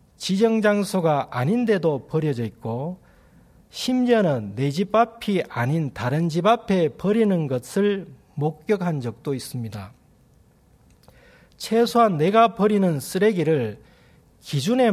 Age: 40-59